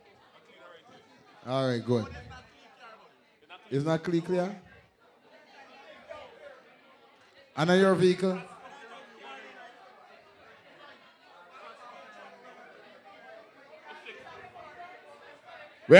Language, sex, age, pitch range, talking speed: English, male, 30-49, 150-185 Hz, 40 wpm